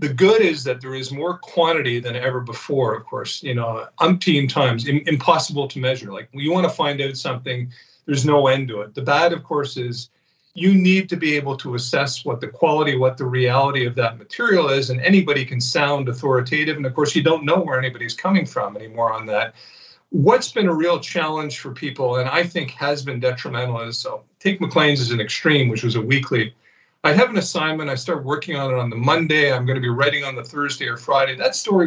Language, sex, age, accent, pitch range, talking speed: English, male, 50-69, American, 125-155 Hz, 225 wpm